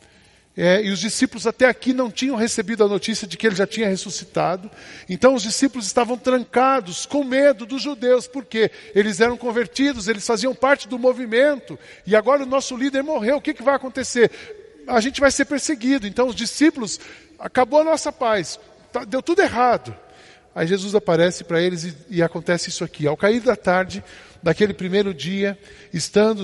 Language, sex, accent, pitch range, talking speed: Portuguese, male, Brazilian, 175-240 Hz, 175 wpm